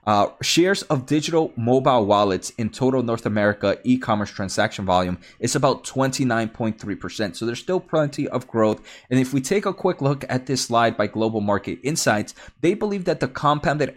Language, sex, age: English, male, 20-39